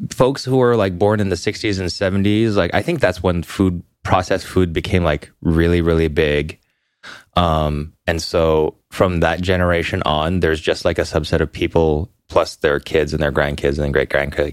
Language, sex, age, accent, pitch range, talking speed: English, male, 30-49, American, 80-110 Hz, 190 wpm